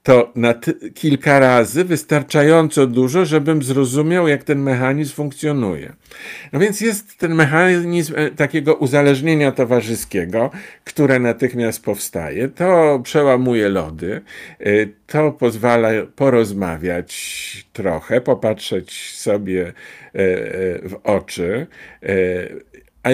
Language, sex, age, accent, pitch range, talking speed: Polish, male, 50-69, native, 105-150 Hz, 90 wpm